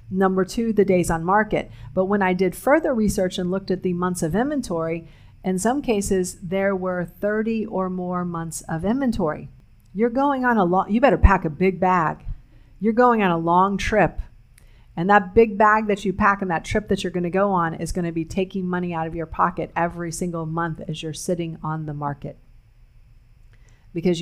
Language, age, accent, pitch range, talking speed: English, 40-59, American, 165-195 Hz, 205 wpm